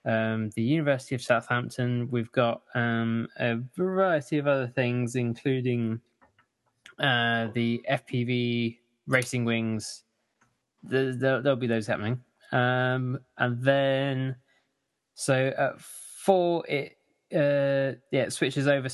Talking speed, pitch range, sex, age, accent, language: 110 wpm, 115-135 Hz, male, 20-39, British, English